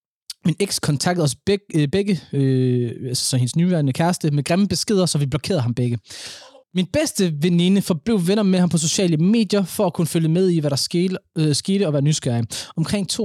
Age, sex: 20-39, male